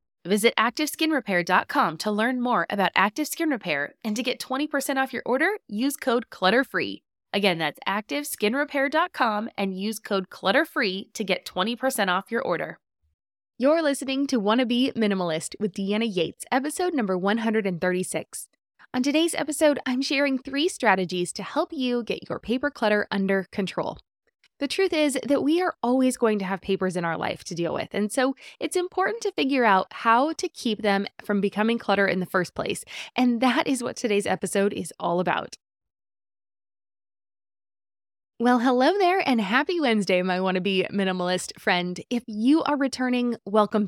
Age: 20-39